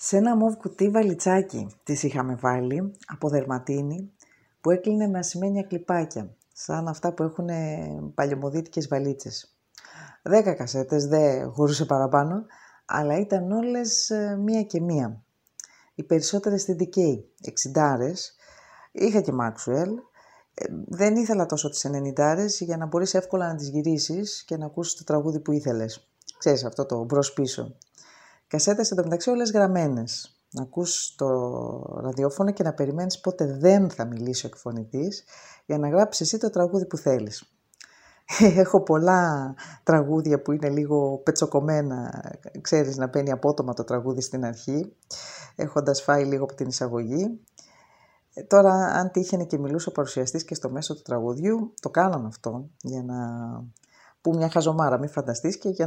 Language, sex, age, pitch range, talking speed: Greek, female, 20-39, 135-185 Hz, 145 wpm